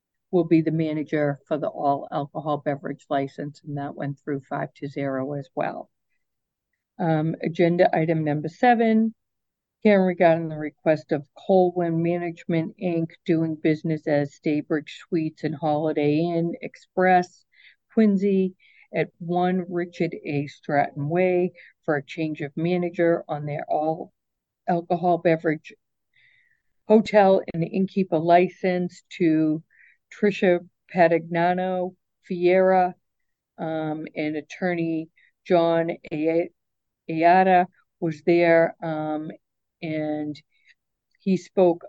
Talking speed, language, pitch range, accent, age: 115 wpm, English, 155-180 Hz, American, 50-69